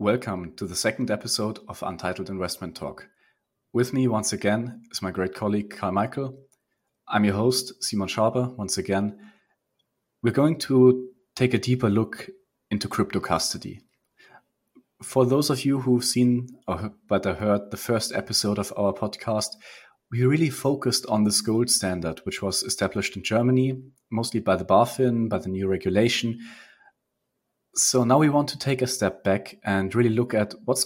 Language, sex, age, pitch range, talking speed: English, male, 30-49, 100-125 Hz, 165 wpm